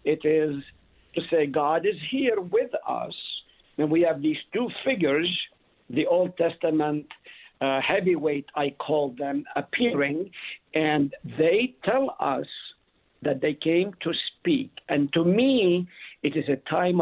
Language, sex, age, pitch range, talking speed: English, male, 50-69, 135-170 Hz, 140 wpm